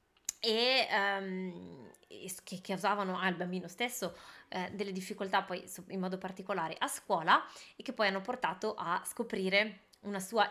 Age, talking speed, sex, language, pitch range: 20-39, 150 wpm, female, Italian, 185-230 Hz